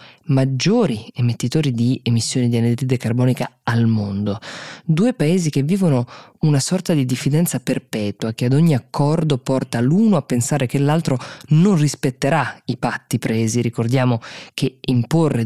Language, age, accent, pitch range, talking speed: Italian, 20-39, native, 120-155 Hz, 140 wpm